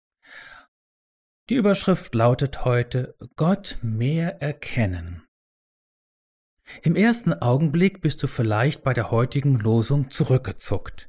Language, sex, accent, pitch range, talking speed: German, male, German, 105-150 Hz, 95 wpm